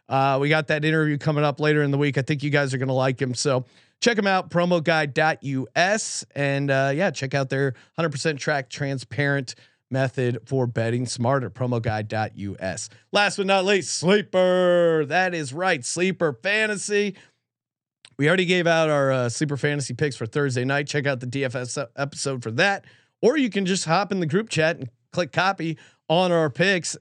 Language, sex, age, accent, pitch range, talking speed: English, male, 30-49, American, 135-170 Hz, 185 wpm